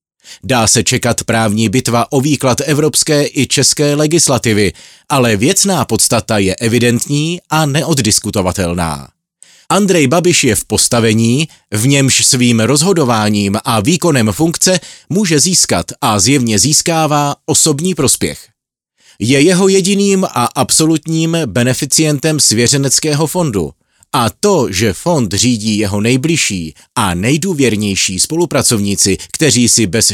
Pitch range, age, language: 115-160 Hz, 30-49, Czech